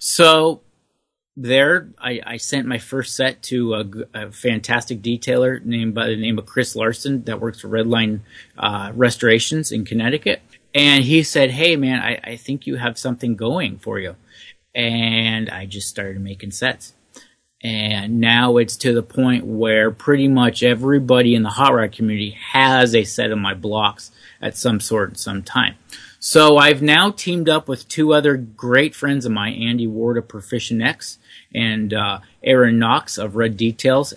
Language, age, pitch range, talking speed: English, 30-49, 110-130 Hz, 170 wpm